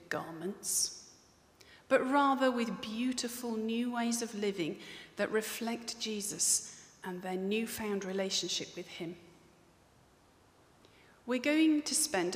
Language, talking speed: English, 105 wpm